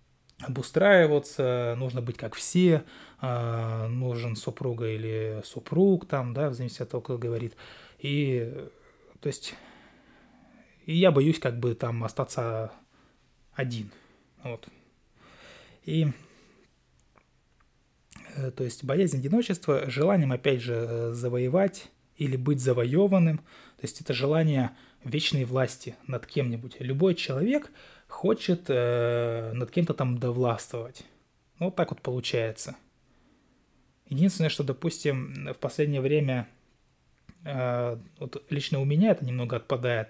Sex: male